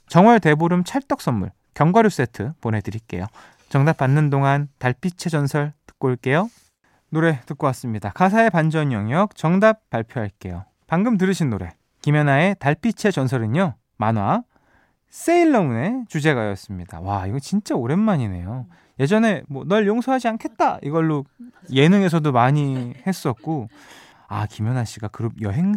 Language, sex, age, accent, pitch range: Korean, male, 20-39, native, 120-195 Hz